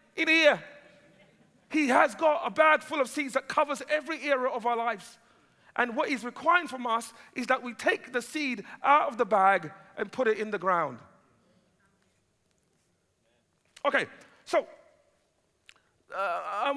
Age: 40-59